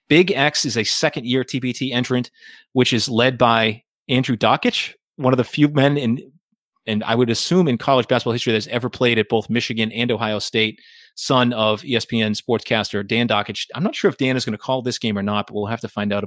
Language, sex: English, male